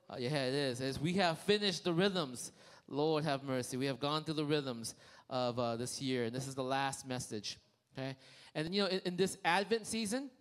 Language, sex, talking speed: English, male, 220 wpm